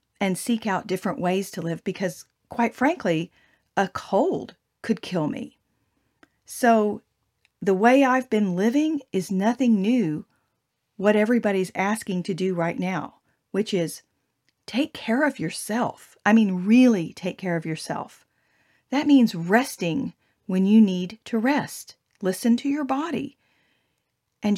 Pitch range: 180-235 Hz